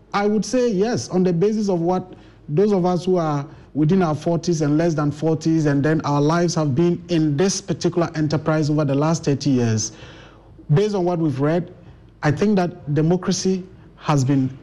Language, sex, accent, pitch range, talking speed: English, male, Nigerian, 145-195 Hz, 195 wpm